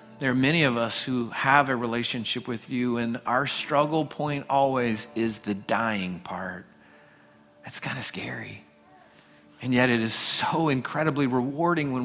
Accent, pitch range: American, 120-150 Hz